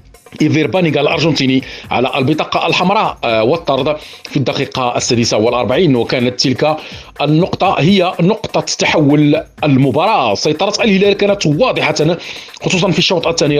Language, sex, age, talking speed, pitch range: Arabic, male, 40-59, 110 wpm, 135-170 Hz